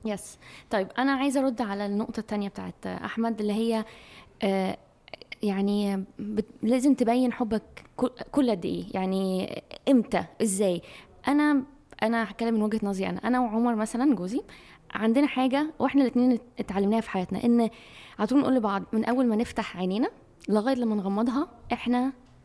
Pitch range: 210-255 Hz